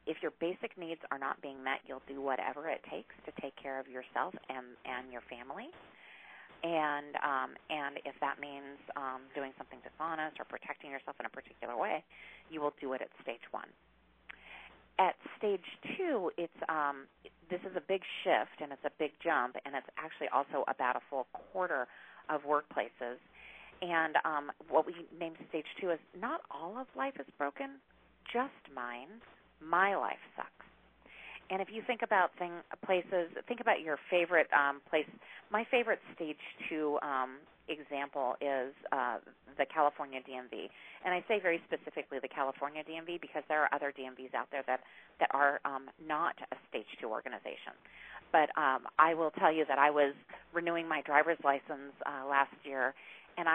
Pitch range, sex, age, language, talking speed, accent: 135-175 Hz, female, 40-59, English, 175 wpm, American